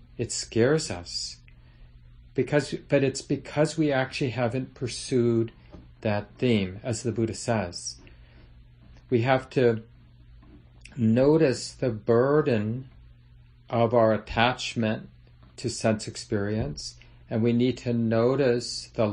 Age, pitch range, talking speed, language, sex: 40-59, 90-125 Hz, 105 wpm, English, male